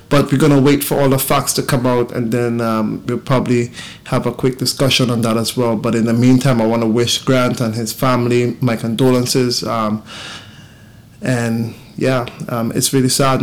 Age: 20-39